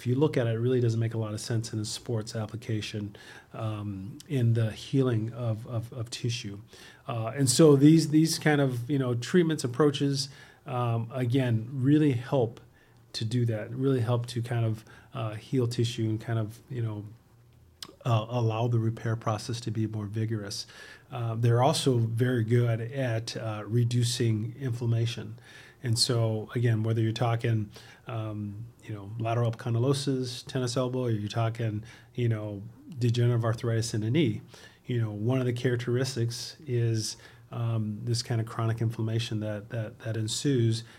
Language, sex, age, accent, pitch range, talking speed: English, male, 40-59, American, 110-125 Hz, 165 wpm